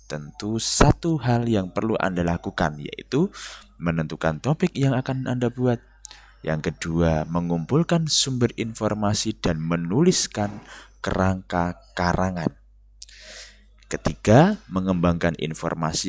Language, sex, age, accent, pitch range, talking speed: Indonesian, male, 20-39, native, 85-125 Hz, 95 wpm